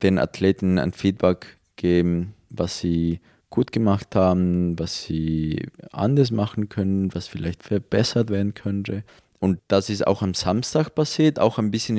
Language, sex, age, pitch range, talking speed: German, male, 20-39, 95-120 Hz, 150 wpm